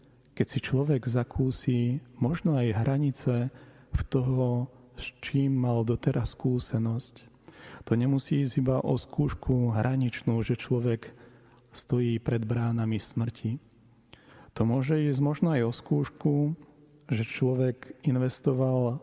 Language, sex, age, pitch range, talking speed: Slovak, male, 40-59, 115-130 Hz, 115 wpm